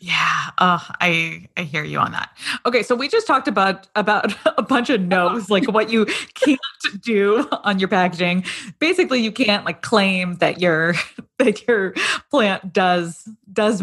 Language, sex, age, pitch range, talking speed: English, female, 20-39, 170-230 Hz, 170 wpm